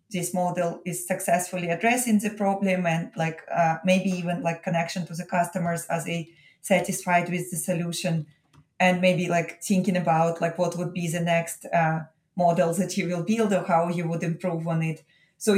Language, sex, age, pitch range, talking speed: English, female, 20-39, 170-190 Hz, 185 wpm